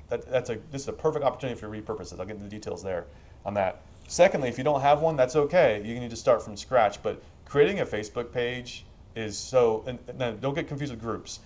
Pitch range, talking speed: 105-135 Hz, 245 wpm